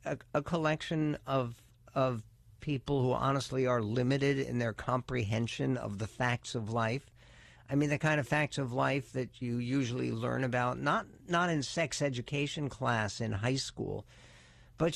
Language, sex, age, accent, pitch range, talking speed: English, male, 50-69, American, 120-170 Hz, 165 wpm